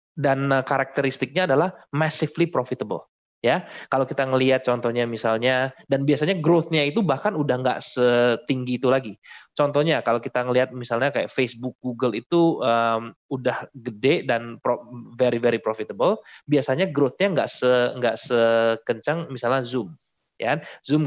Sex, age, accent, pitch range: male, 20-39, native, 120-145 Hz